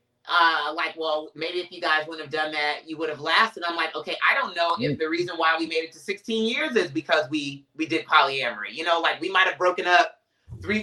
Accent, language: American, English